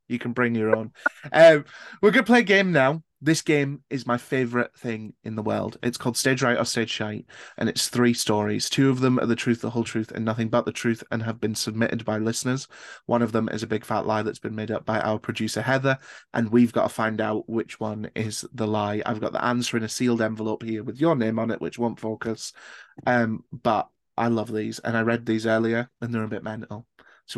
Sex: male